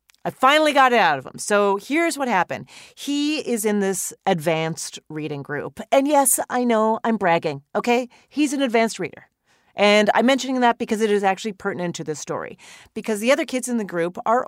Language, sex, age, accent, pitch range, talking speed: English, female, 40-59, American, 200-270 Hz, 205 wpm